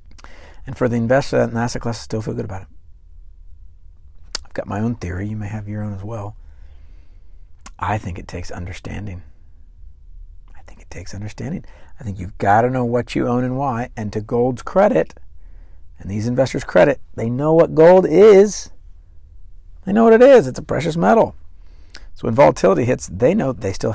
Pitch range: 75-110 Hz